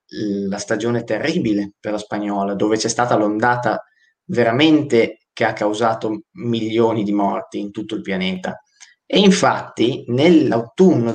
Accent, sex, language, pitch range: native, male, Italian, 115-140 Hz